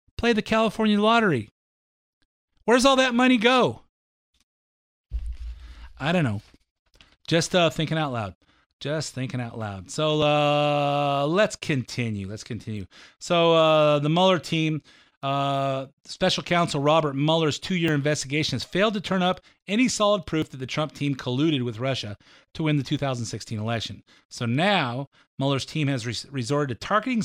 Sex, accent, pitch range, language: male, American, 125-170 Hz, English